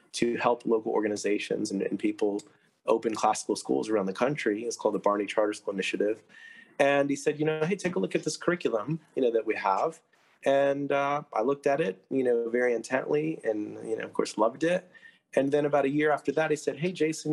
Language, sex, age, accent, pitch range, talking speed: English, male, 30-49, American, 110-150 Hz, 225 wpm